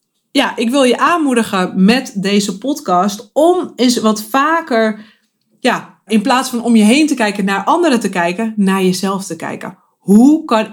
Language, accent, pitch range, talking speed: Dutch, Dutch, 190-265 Hz, 175 wpm